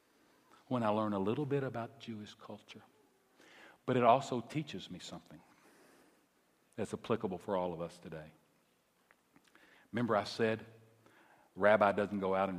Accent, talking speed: American, 145 wpm